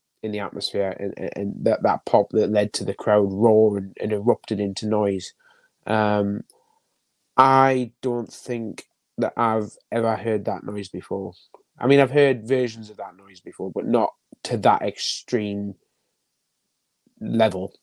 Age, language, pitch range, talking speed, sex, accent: 20-39, English, 105-125 Hz, 150 wpm, male, British